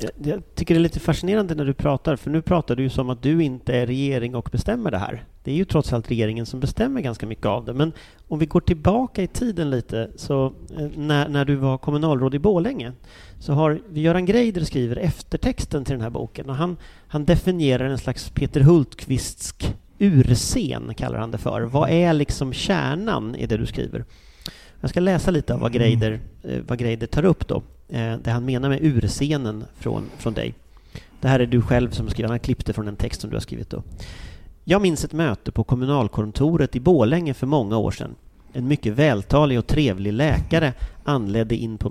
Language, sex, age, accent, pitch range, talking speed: English, male, 40-59, Swedish, 115-150 Hz, 200 wpm